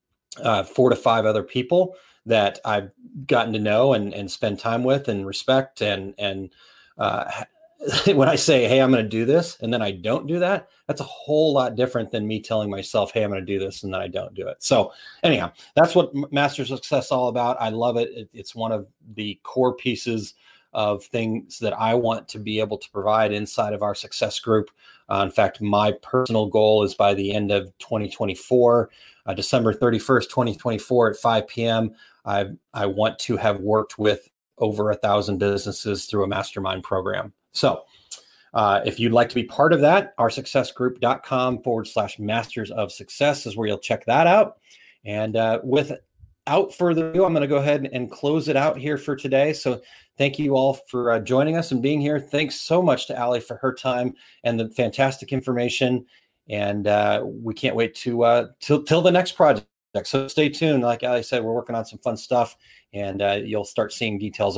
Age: 30-49